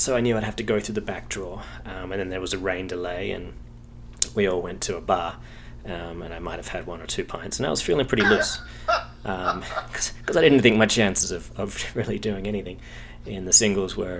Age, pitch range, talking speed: 30-49, 80-100 Hz, 245 wpm